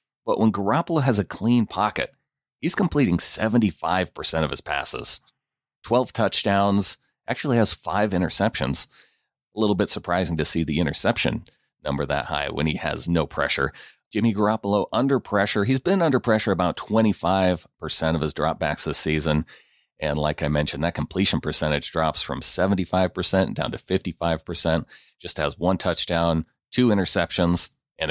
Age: 30-49